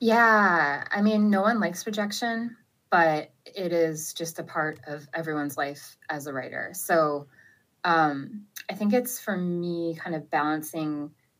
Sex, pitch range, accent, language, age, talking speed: female, 155-205 Hz, American, English, 20-39, 155 wpm